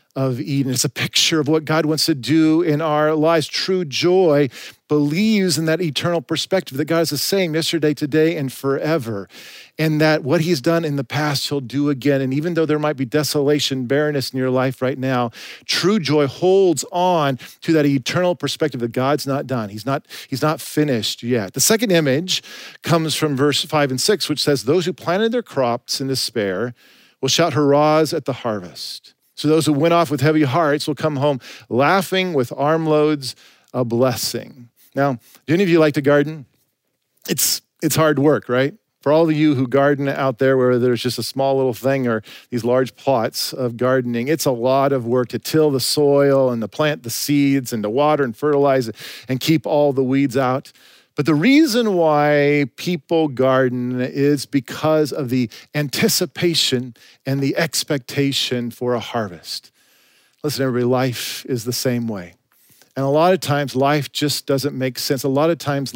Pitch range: 130-155 Hz